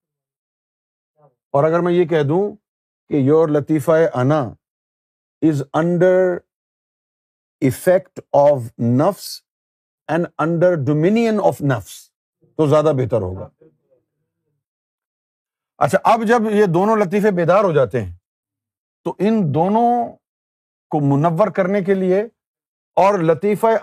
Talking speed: 105 wpm